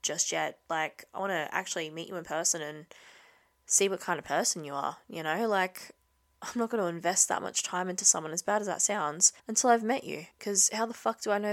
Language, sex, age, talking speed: English, female, 20-39, 250 wpm